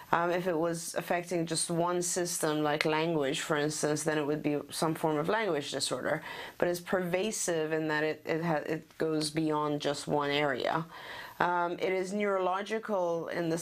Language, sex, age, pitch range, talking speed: English, female, 30-49, 150-175 Hz, 180 wpm